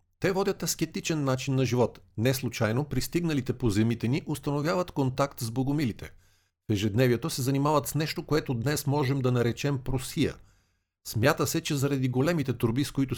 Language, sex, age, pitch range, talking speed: Bulgarian, male, 50-69, 110-140 Hz, 165 wpm